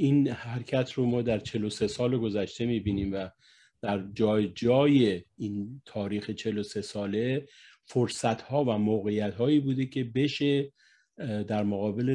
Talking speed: 125 wpm